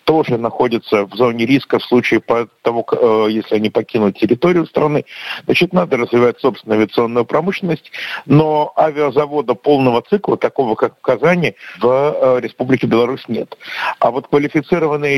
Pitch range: 120-155 Hz